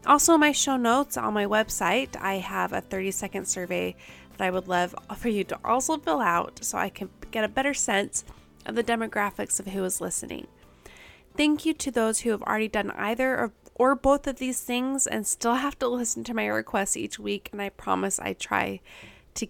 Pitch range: 180-235 Hz